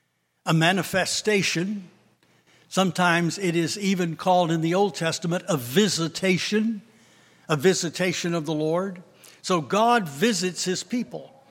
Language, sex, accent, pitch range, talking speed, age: English, male, American, 155-195 Hz, 120 wpm, 60-79